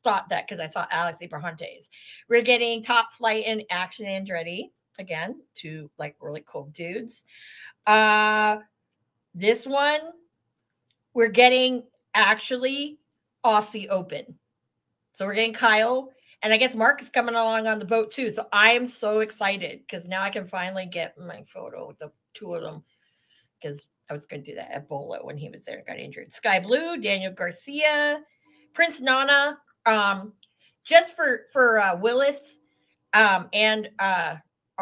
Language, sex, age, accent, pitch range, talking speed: English, female, 40-59, American, 175-250 Hz, 155 wpm